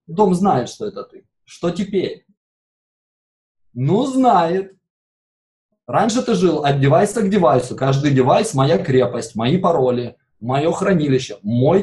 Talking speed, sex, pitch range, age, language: 125 wpm, male, 130-185 Hz, 20-39, Russian